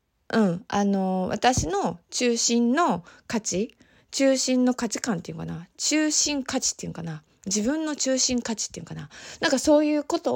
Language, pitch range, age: Japanese, 205-310 Hz, 20-39